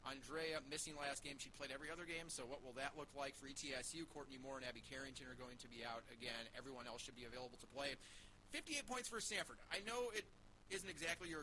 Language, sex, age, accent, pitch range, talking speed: English, male, 30-49, American, 125-155 Hz, 235 wpm